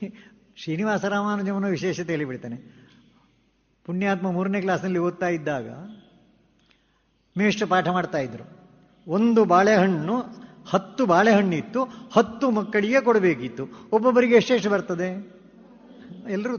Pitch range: 180-235 Hz